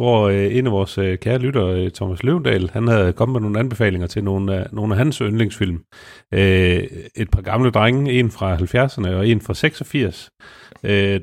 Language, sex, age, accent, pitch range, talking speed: Danish, male, 40-59, native, 95-115 Hz, 180 wpm